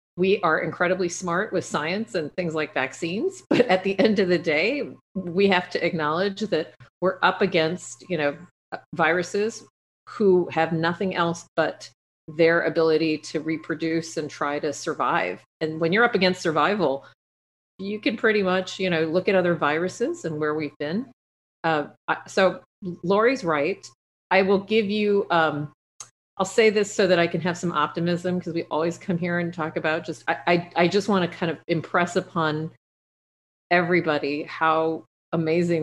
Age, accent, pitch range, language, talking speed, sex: 40-59, American, 155-180 Hz, English, 170 wpm, female